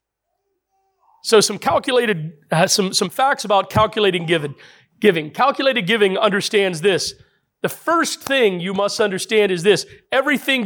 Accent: American